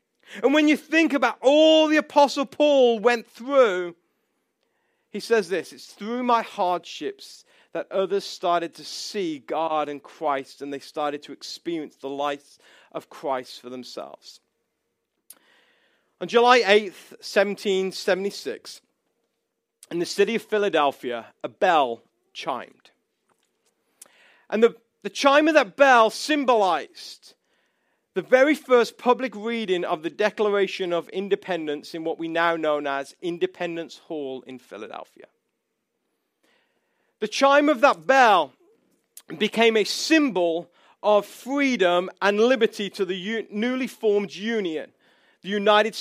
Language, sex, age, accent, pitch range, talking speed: English, male, 40-59, British, 175-260 Hz, 125 wpm